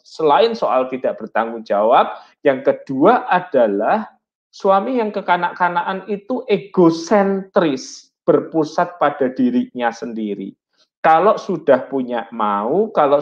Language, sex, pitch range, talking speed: Malay, male, 125-195 Hz, 100 wpm